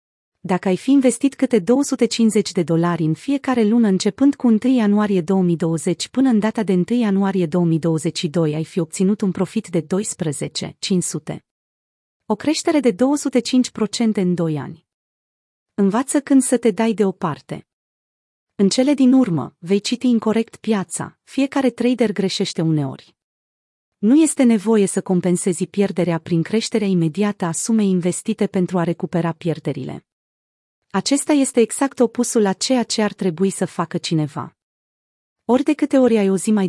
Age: 30-49